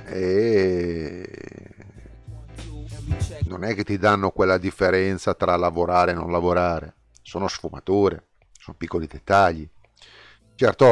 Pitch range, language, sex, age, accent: 85-105 Hz, Italian, male, 40-59, native